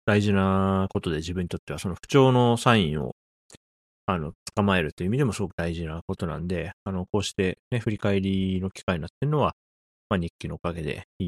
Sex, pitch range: male, 85-110 Hz